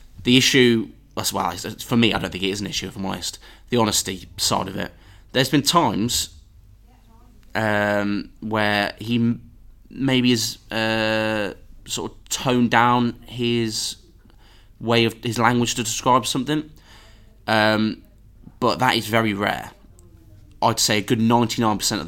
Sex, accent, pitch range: male, British, 95-115 Hz